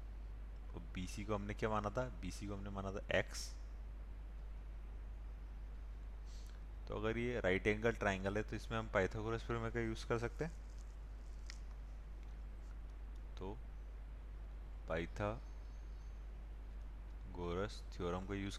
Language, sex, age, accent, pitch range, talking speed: Hindi, male, 30-49, native, 65-105 Hz, 115 wpm